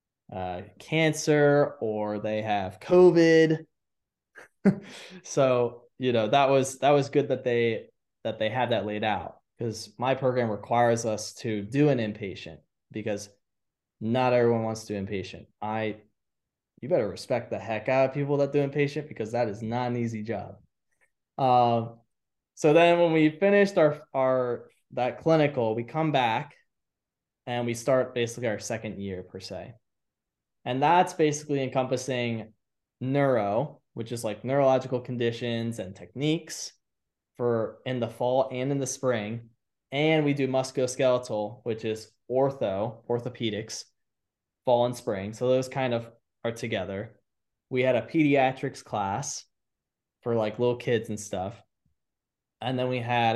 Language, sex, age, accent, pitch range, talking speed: English, male, 20-39, American, 110-135 Hz, 145 wpm